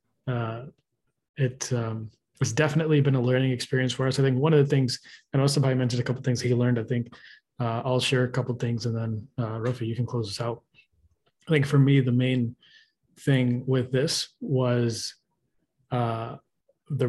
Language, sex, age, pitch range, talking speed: English, male, 20-39, 120-140 Hz, 200 wpm